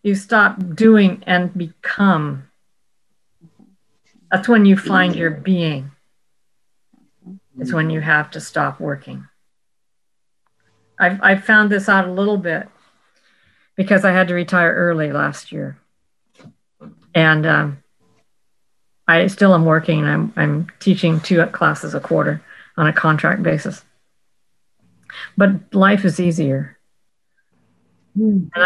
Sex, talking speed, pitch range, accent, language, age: female, 115 wpm, 160-195 Hz, American, English, 50-69